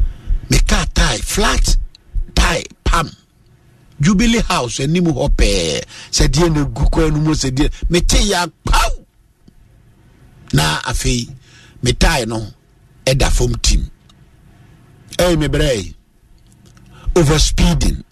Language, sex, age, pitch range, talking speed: English, male, 60-79, 120-180 Hz, 85 wpm